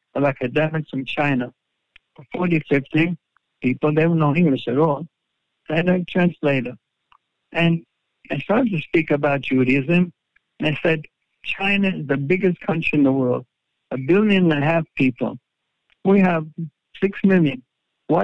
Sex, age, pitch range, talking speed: male, 60-79, 130-170 Hz, 155 wpm